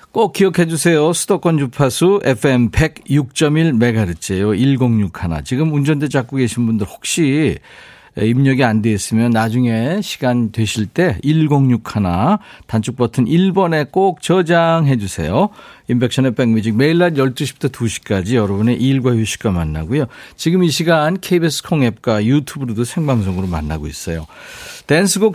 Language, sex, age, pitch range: Korean, male, 50-69, 120-170 Hz